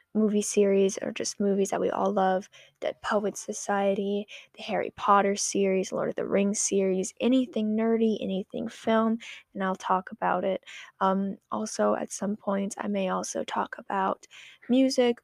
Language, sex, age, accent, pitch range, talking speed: English, female, 10-29, American, 200-235 Hz, 160 wpm